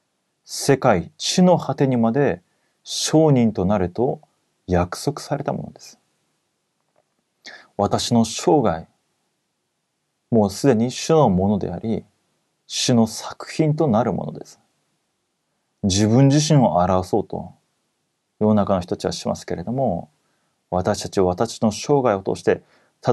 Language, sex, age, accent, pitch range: Korean, male, 30-49, Japanese, 105-150 Hz